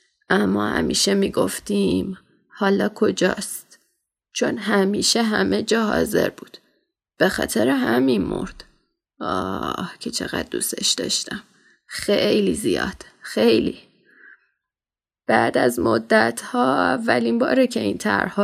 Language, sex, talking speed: Persian, female, 105 wpm